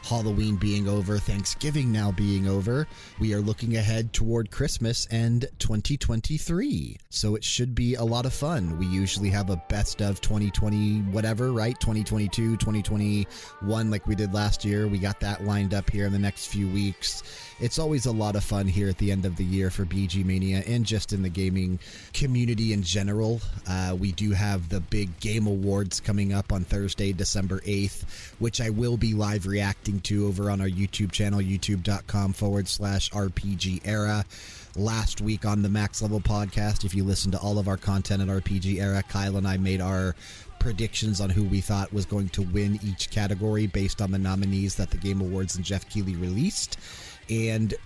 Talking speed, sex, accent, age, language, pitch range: 190 wpm, male, American, 30-49, English, 95-110 Hz